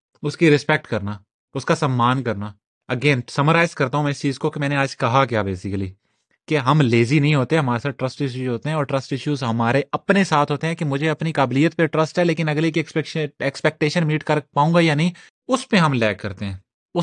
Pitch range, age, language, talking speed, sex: 115-150 Hz, 30-49, Urdu, 230 wpm, male